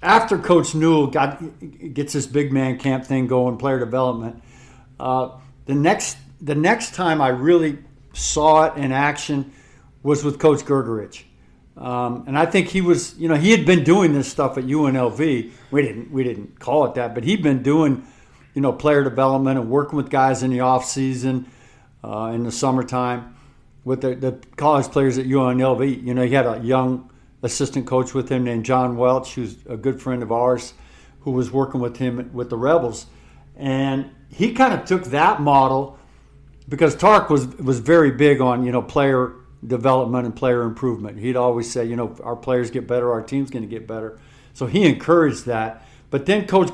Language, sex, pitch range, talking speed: English, male, 125-145 Hz, 190 wpm